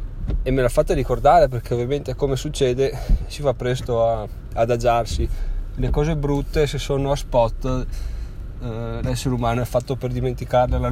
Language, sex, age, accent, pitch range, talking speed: Italian, male, 20-39, native, 110-140 Hz, 165 wpm